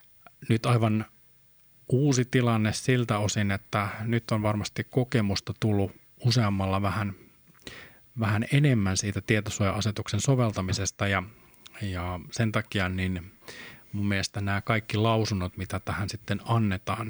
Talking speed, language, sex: 115 wpm, Finnish, male